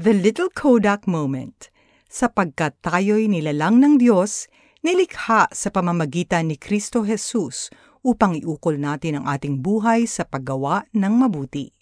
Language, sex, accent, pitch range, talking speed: Filipino, female, native, 165-245 Hz, 125 wpm